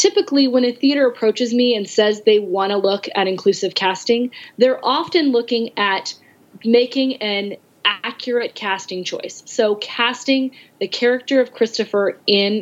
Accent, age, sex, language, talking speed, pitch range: American, 20-39, female, English, 145 wpm, 195-245 Hz